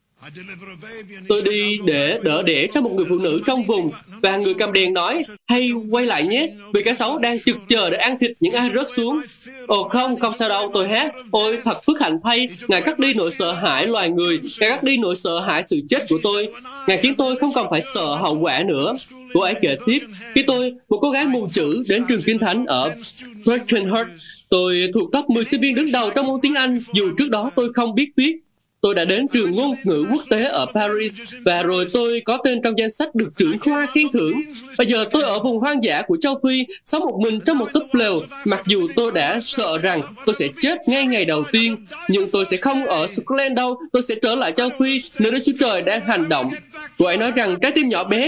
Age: 20-39